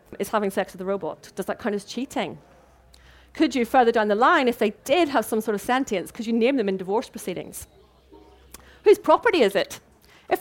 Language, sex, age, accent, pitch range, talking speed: English, female, 30-49, British, 200-265 Hz, 215 wpm